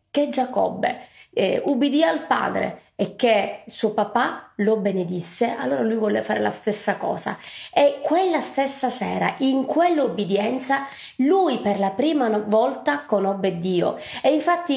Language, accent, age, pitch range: Italian, native, 20-39, 225-280 Hz